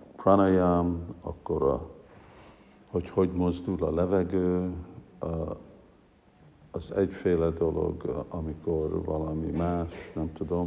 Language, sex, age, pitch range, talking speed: Hungarian, male, 60-79, 80-90 Hz, 90 wpm